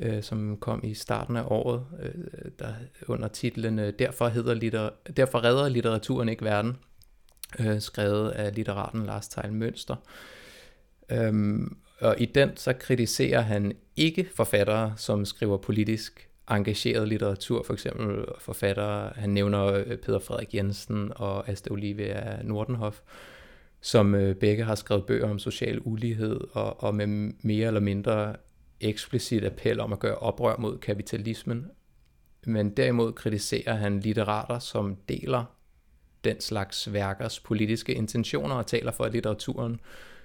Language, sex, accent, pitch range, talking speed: Danish, male, native, 105-120 Hz, 135 wpm